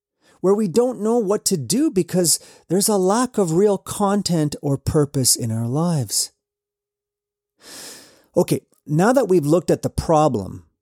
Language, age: English, 40-59